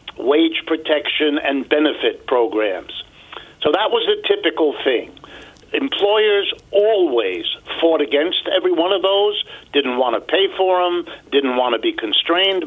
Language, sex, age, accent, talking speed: English, male, 60-79, American, 140 wpm